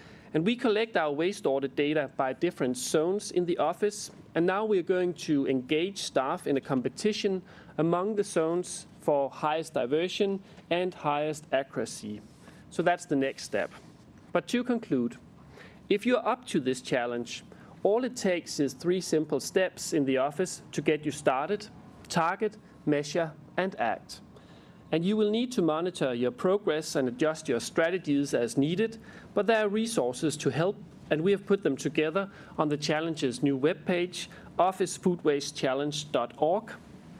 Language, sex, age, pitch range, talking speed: English, male, 40-59, 140-185 Hz, 155 wpm